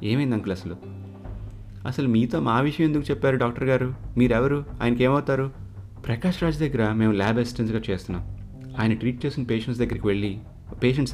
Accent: native